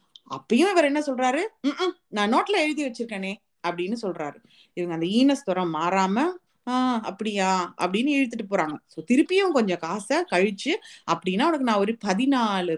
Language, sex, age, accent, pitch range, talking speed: Tamil, female, 30-49, native, 190-285 Hz, 140 wpm